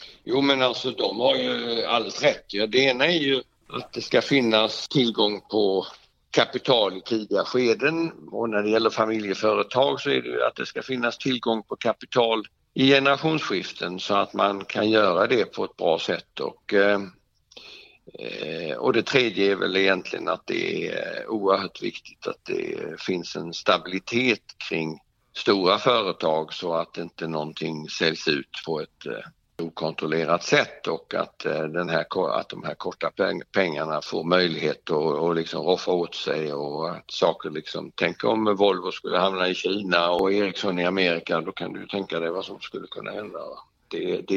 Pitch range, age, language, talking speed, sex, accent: 90-125 Hz, 60-79, English, 165 wpm, male, Swedish